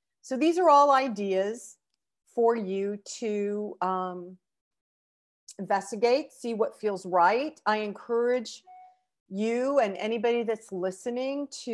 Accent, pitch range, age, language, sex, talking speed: American, 175-215 Hz, 40-59, English, female, 110 wpm